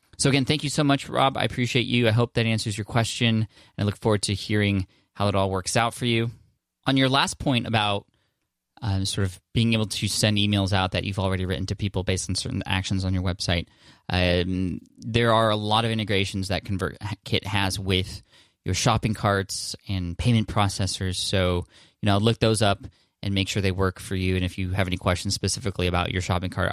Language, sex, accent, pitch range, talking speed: English, male, American, 95-110 Hz, 215 wpm